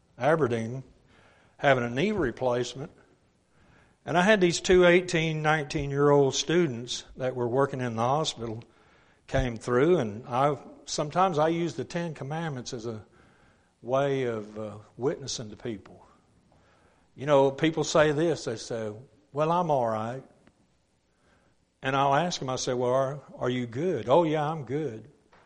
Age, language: 60-79, English